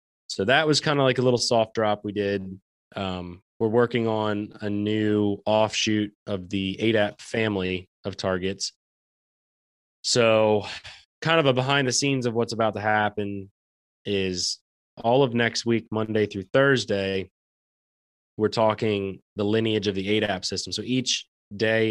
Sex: male